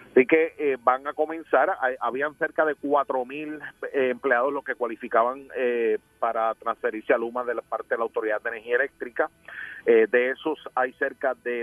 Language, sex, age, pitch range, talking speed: Spanish, male, 40-59, 125-190 Hz, 185 wpm